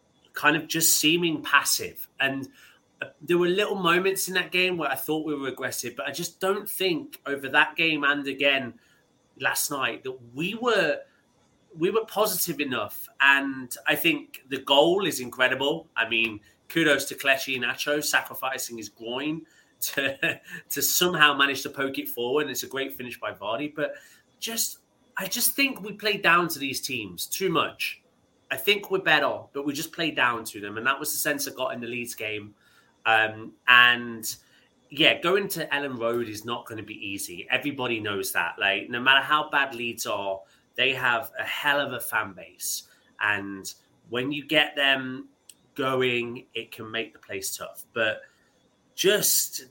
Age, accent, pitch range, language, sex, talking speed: 30-49, British, 115-155 Hz, English, male, 180 wpm